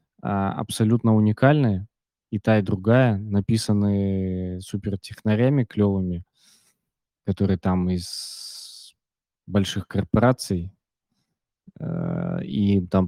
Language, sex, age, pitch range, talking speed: Russian, male, 20-39, 95-120 Hz, 75 wpm